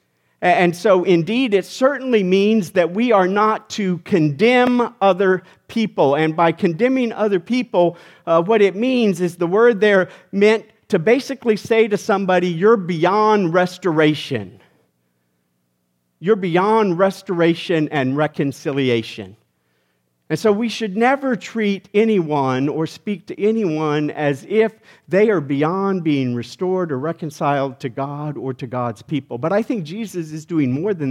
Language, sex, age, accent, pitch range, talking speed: English, male, 50-69, American, 140-215 Hz, 145 wpm